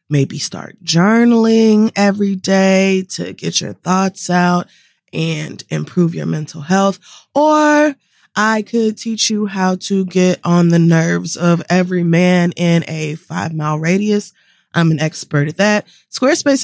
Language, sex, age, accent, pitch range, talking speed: English, female, 20-39, American, 175-230 Hz, 145 wpm